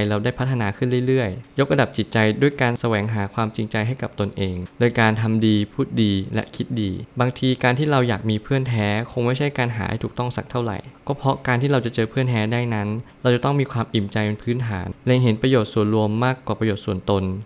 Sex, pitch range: male, 105-125 Hz